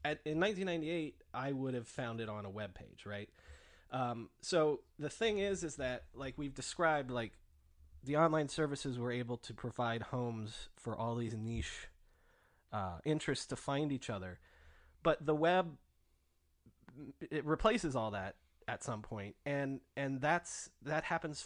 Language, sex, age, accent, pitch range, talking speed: English, male, 30-49, American, 115-155 Hz, 160 wpm